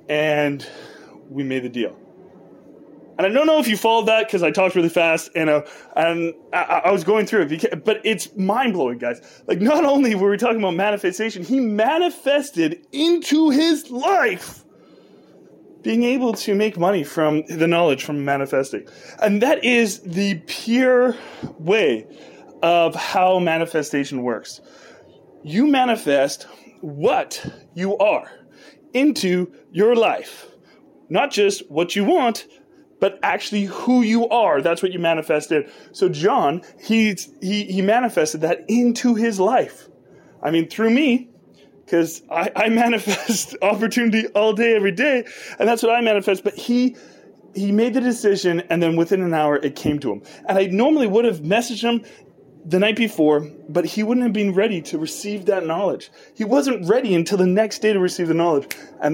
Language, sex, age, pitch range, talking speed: English, male, 20-39, 165-235 Hz, 160 wpm